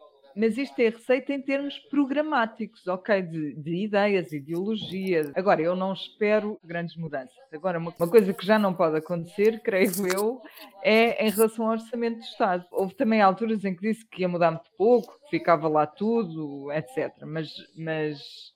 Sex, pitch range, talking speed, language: female, 170-220 Hz, 175 wpm, Portuguese